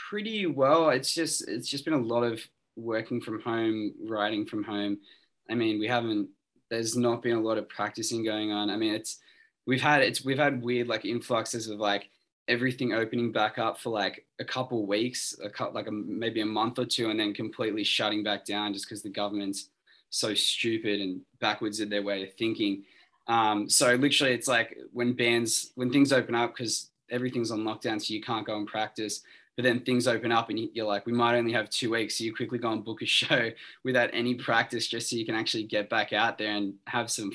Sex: male